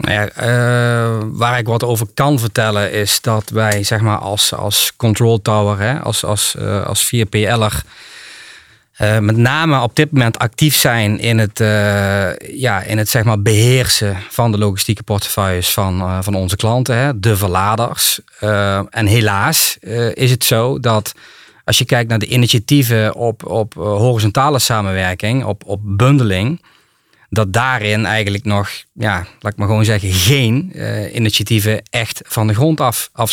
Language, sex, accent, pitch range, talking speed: Dutch, male, Dutch, 105-125 Hz, 165 wpm